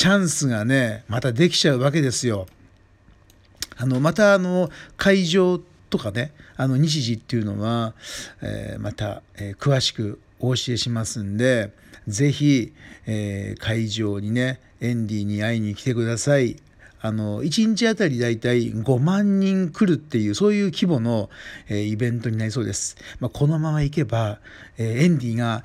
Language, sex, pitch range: Japanese, male, 110-145 Hz